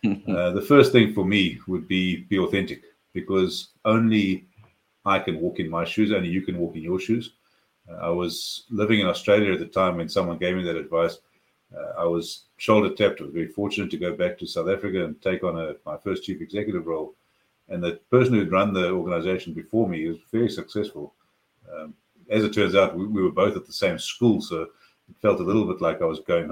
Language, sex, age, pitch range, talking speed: English, male, 50-69, 90-110 Hz, 220 wpm